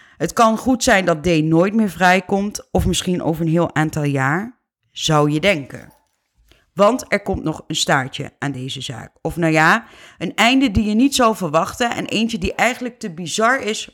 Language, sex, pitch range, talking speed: Dutch, female, 150-200 Hz, 195 wpm